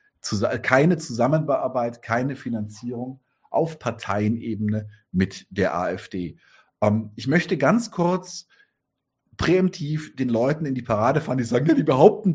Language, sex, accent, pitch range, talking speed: German, male, German, 105-160 Hz, 120 wpm